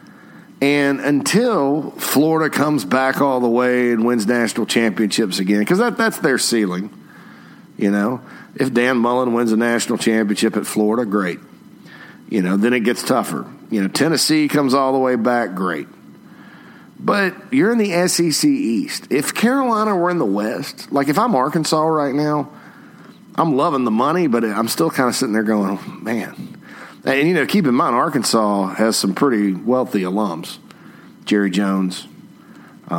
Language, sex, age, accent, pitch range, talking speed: English, male, 40-59, American, 105-150 Hz, 165 wpm